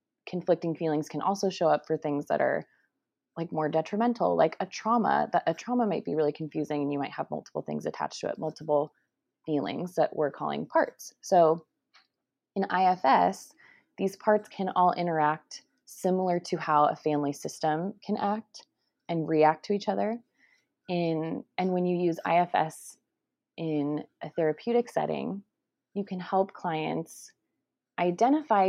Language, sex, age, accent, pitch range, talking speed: English, female, 20-39, American, 155-200 Hz, 155 wpm